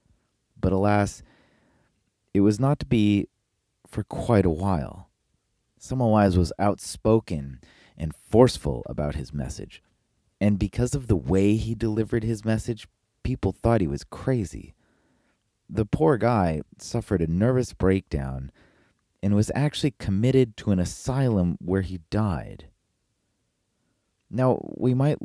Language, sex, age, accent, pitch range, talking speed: English, male, 30-49, American, 80-115 Hz, 125 wpm